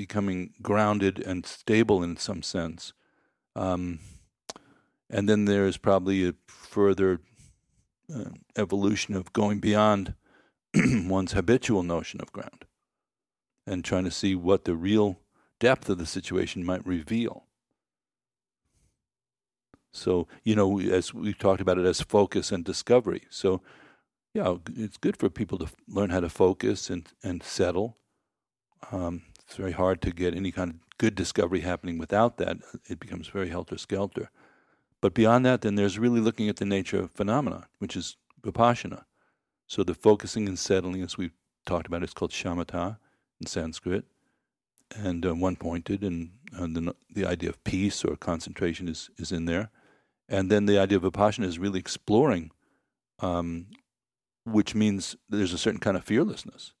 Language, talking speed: English, 155 wpm